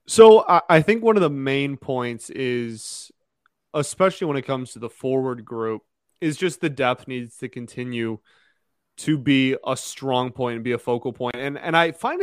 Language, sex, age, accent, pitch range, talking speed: English, male, 20-39, American, 125-155 Hz, 185 wpm